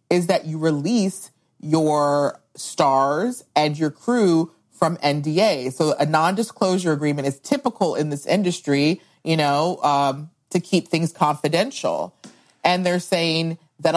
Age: 30-49